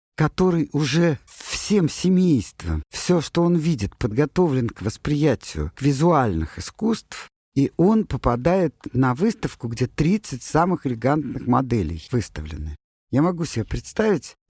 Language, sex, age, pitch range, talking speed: Russian, male, 50-69, 100-155 Hz, 120 wpm